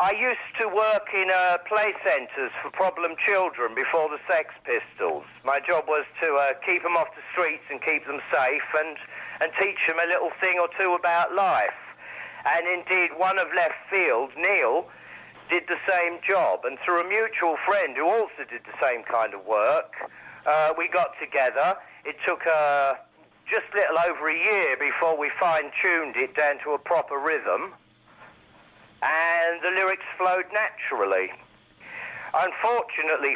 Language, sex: English, male